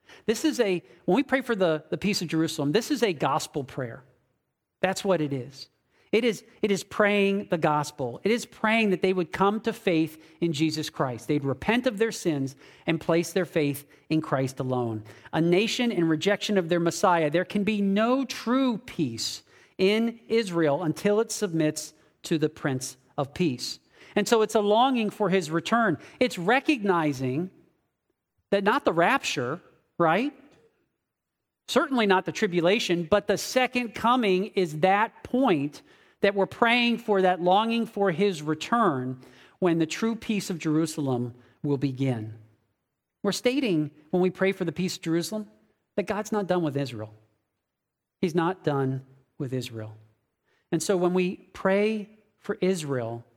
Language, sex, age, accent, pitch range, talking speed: English, male, 40-59, American, 145-210 Hz, 165 wpm